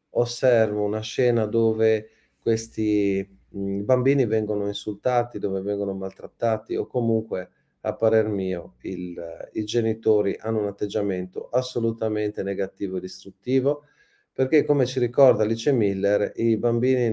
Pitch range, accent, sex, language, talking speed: 100-120 Hz, native, male, Italian, 125 wpm